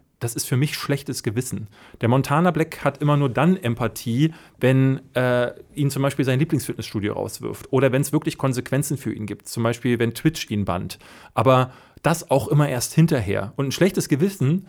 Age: 30-49